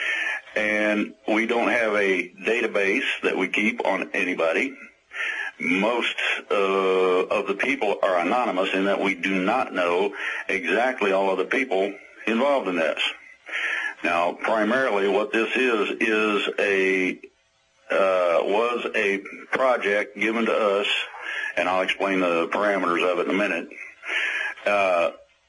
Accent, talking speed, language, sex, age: American, 135 wpm, English, male, 60-79